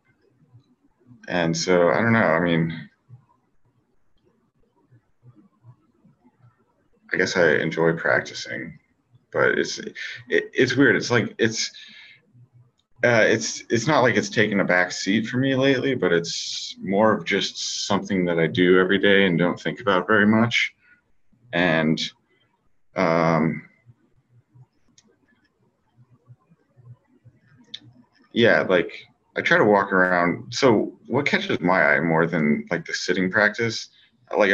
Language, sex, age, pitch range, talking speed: English, male, 30-49, 85-120 Hz, 125 wpm